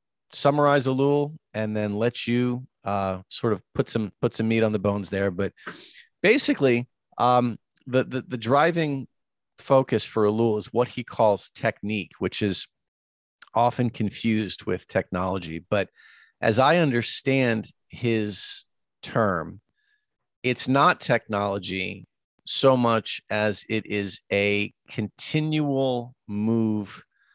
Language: English